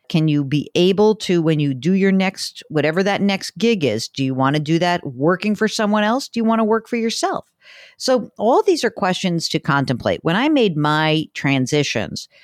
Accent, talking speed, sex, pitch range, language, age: American, 210 wpm, female, 140-185 Hz, English, 50-69